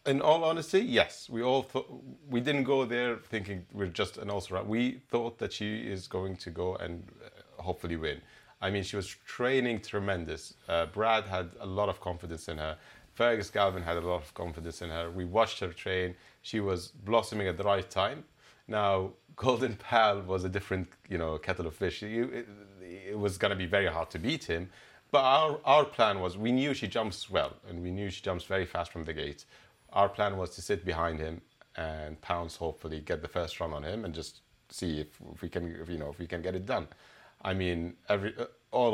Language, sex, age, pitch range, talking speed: English, male, 30-49, 85-105 Hz, 215 wpm